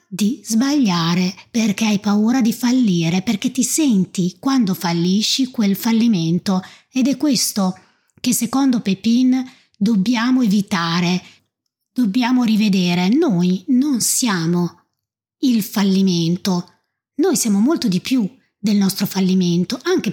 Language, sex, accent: Italian, female, native